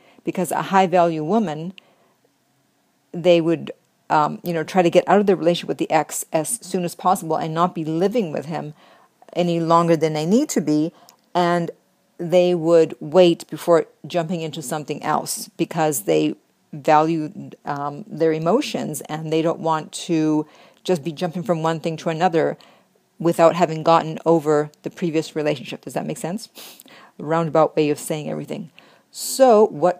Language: English